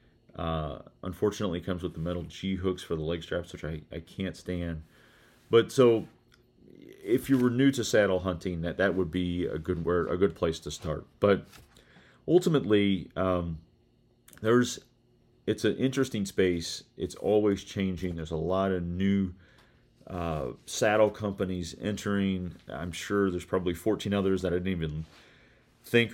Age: 30-49